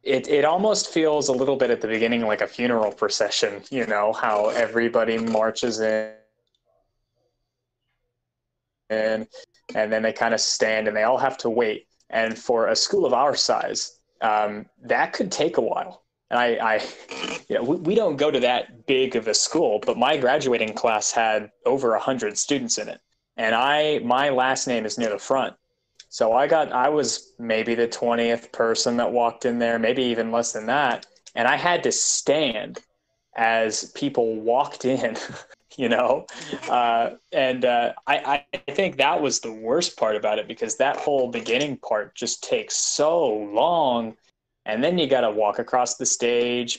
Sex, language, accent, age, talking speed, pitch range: male, English, American, 20-39, 180 wpm, 110-130 Hz